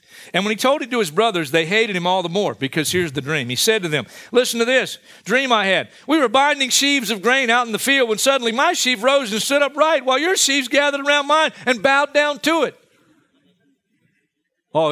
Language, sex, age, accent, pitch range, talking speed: English, male, 50-69, American, 160-265 Hz, 235 wpm